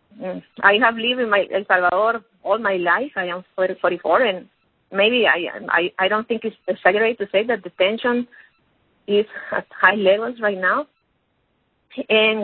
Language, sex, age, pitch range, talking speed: English, female, 30-49, 195-250 Hz, 160 wpm